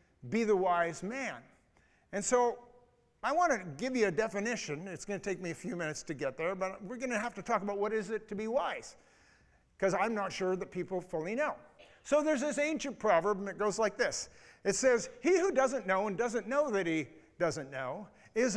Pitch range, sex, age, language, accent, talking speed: 185-255 Hz, male, 50-69, English, American, 225 wpm